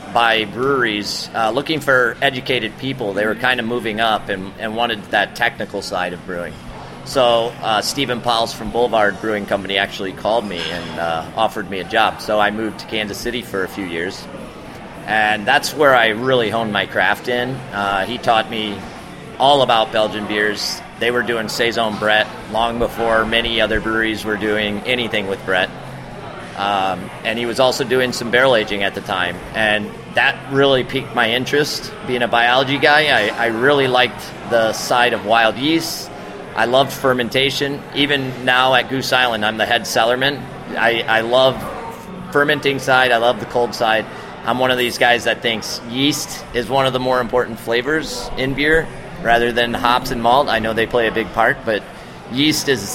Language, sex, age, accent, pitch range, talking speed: English, male, 30-49, American, 110-130 Hz, 185 wpm